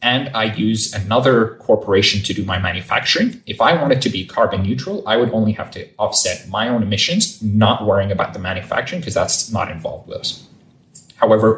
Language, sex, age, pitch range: English, male, 20-39, 100-155 Hz